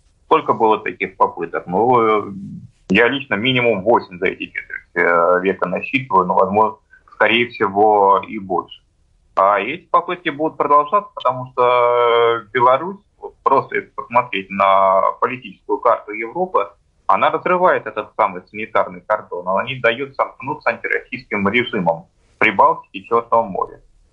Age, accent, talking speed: 30-49, native, 125 wpm